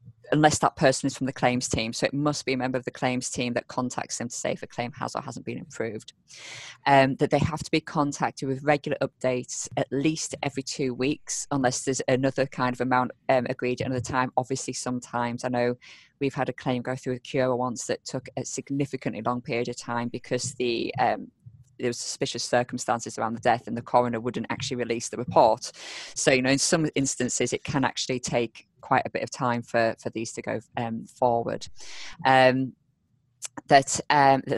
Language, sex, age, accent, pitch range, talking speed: English, female, 20-39, British, 125-140 Hz, 210 wpm